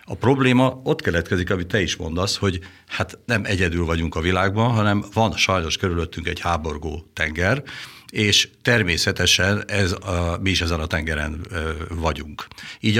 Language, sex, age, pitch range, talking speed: Hungarian, male, 60-79, 85-105 Hz, 150 wpm